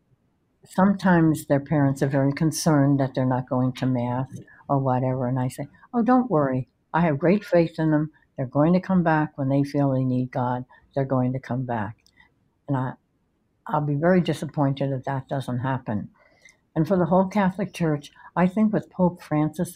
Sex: female